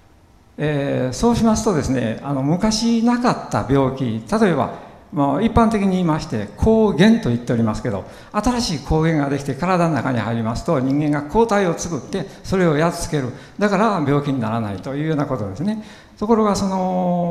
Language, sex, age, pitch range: Japanese, male, 60-79, 130-210 Hz